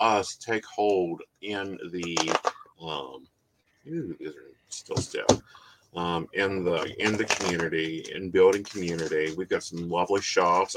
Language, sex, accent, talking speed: English, male, American, 125 wpm